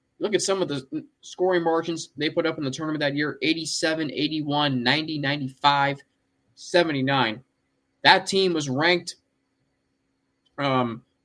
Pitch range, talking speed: 130-165 Hz, 135 wpm